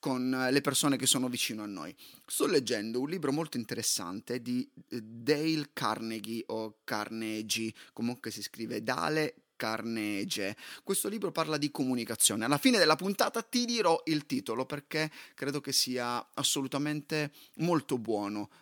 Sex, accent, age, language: male, native, 30-49, Italian